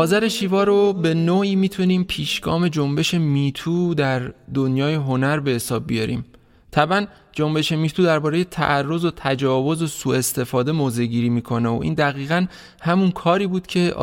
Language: Persian